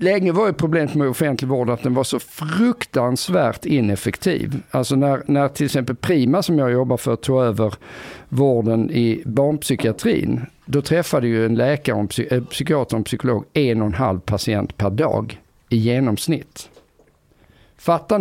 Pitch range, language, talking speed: 115-155 Hz, Swedish, 150 wpm